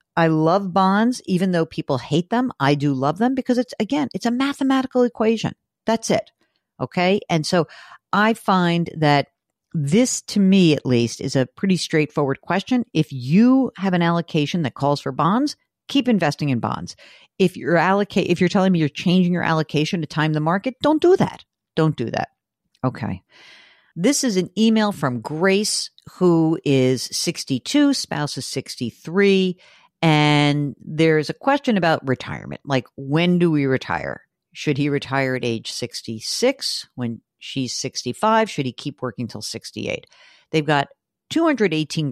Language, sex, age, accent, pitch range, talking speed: English, female, 50-69, American, 135-200 Hz, 160 wpm